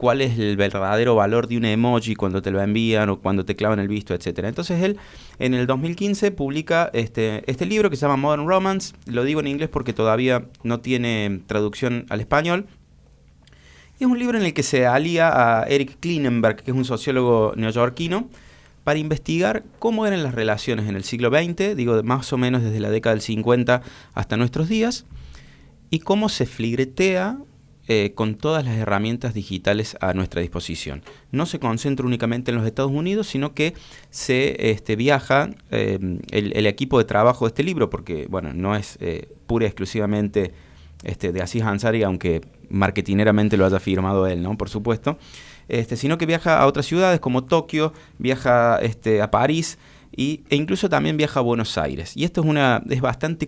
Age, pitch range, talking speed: 30-49, 105-145 Hz, 185 wpm